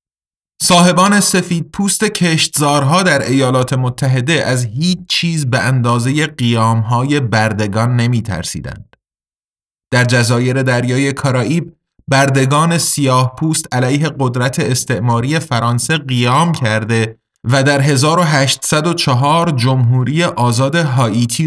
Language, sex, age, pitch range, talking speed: Persian, male, 30-49, 125-155 Hz, 100 wpm